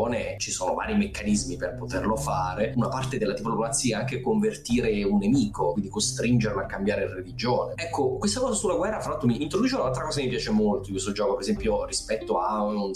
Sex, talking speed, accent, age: male, 205 wpm, native, 30-49